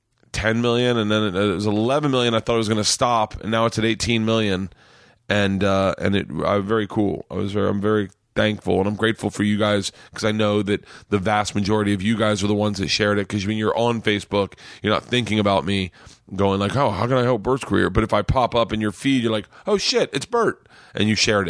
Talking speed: 255 wpm